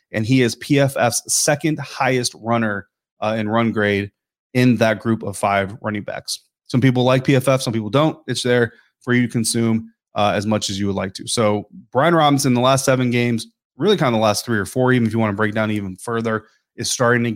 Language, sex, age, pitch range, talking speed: English, male, 30-49, 110-130 Hz, 230 wpm